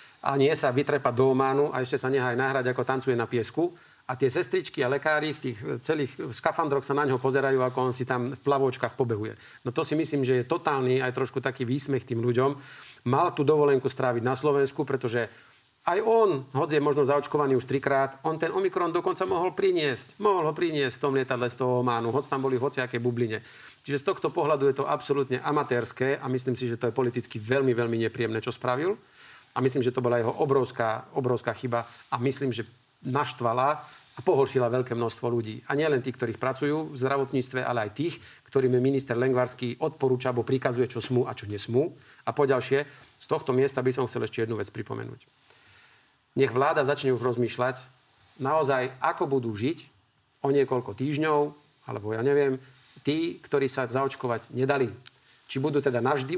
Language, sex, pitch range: Slovak, male, 125-145 Hz